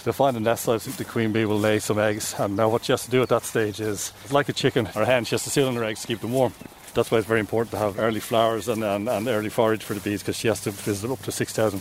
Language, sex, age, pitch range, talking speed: English, male, 30-49, 105-120 Hz, 335 wpm